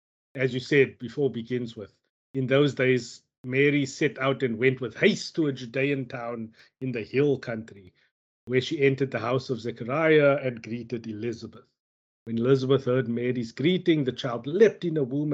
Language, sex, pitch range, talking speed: English, male, 120-150 Hz, 175 wpm